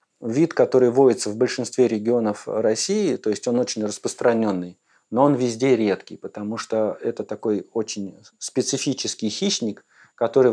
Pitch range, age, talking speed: 100-125 Hz, 40-59, 135 wpm